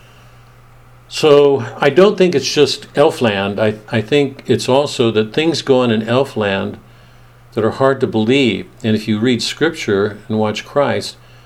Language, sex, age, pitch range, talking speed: English, male, 60-79, 115-140 Hz, 160 wpm